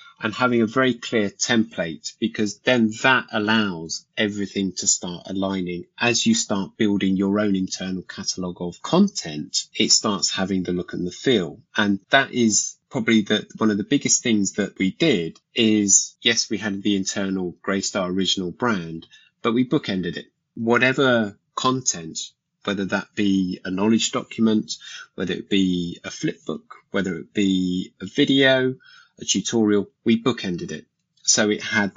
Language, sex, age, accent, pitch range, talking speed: English, male, 20-39, British, 95-120 Hz, 160 wpm